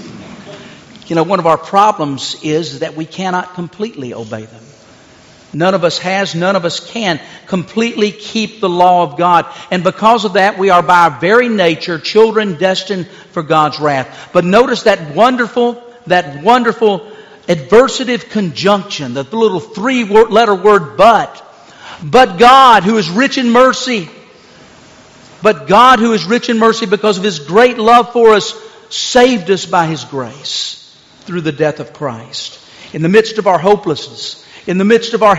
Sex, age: male, 50-69